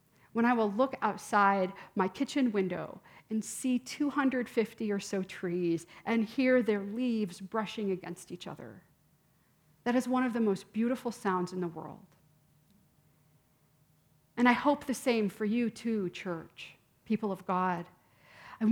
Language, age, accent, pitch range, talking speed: English, 40-59, American, 185-235 Hz, 145 wpm